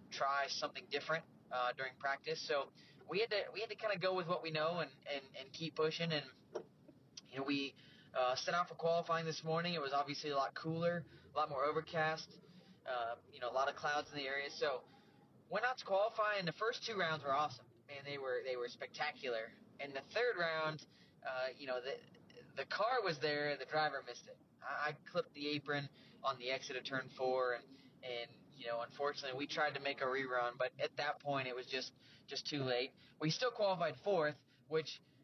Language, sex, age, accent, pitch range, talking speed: English, male, 20-39, American, 135-165 Hz, 220 wpm